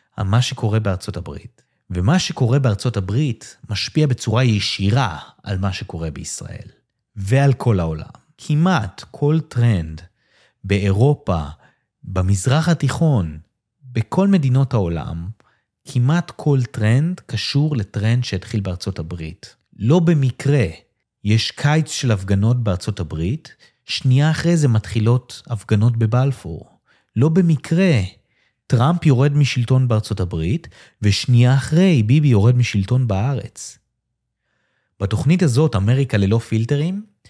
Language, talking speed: Hebrew, 110 wpm